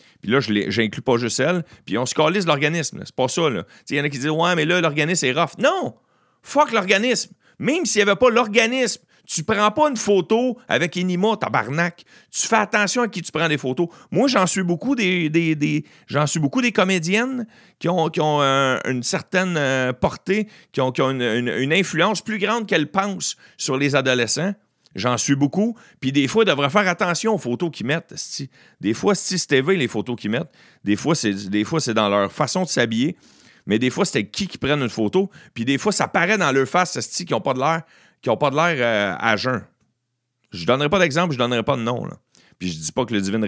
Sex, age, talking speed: male, 40-59, 240 wpm